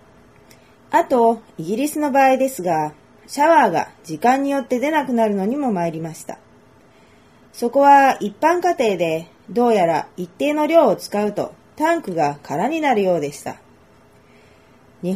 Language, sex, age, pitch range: Japanese, female, 30-49, 185-275 Hz